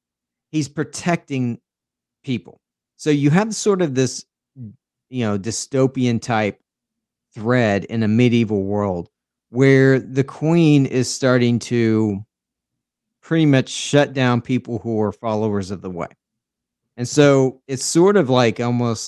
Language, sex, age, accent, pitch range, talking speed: English, male, 40-59, American, 110-140 Hz, 130 wpm